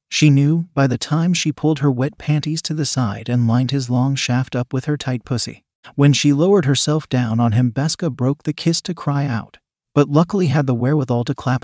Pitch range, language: 125-155 Hz, English